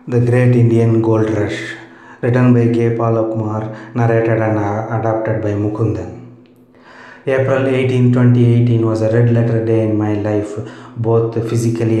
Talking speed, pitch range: 135 wpm, 110-125 Hz